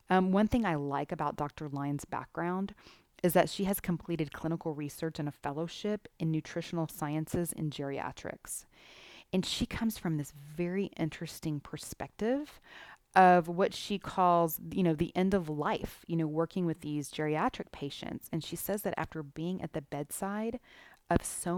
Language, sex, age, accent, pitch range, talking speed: English, female, 30-49, American, 155-185 Hz, 165 wpm